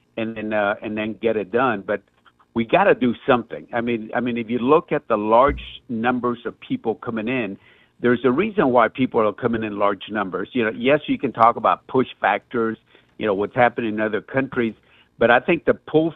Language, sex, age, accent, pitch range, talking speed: English, male, 60-79, American, 110-140 Hz, 215 wpm